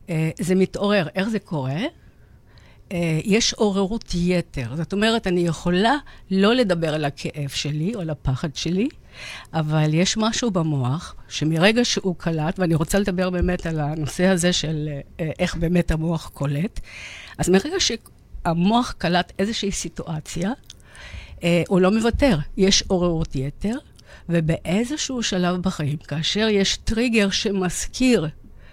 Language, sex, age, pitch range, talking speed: Hebrew, female, 60-79, 160-205 Hz, 130 wpm